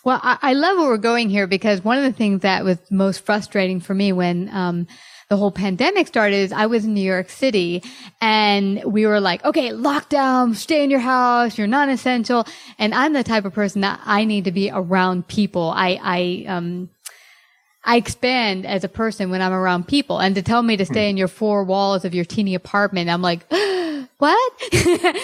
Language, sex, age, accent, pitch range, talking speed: English, female, 30-49, American, 200-275 Hz, 200 wpm